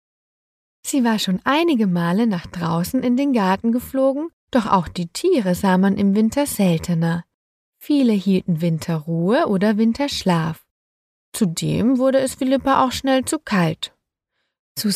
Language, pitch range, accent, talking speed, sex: German, 180-275 Hz, German, 135 wpm, female